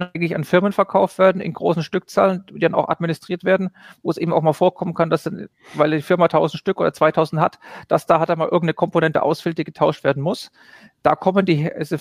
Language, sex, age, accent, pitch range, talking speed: German, male, 40-59, German, 160-185 Hz, 230 wpm